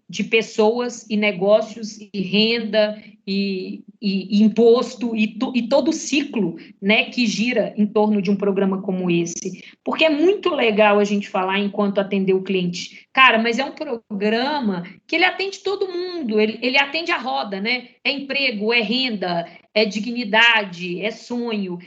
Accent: Brazilian